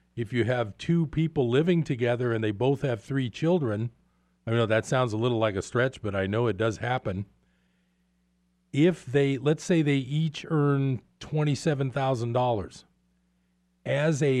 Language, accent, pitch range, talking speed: English, American, 105-150 Hz, 160 wpm